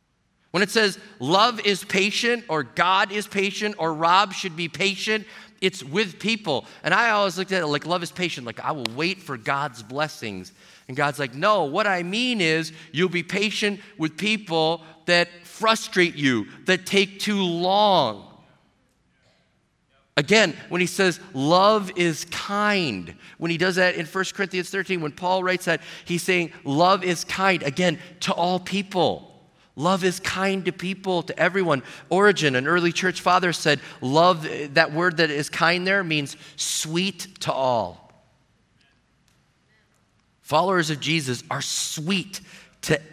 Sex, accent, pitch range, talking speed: male, American, 150-190 Hz, 155 wpm